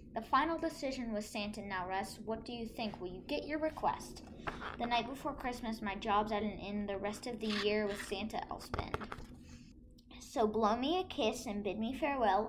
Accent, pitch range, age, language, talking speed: American, 200-235 Hz, 10-29, English, 205 wpm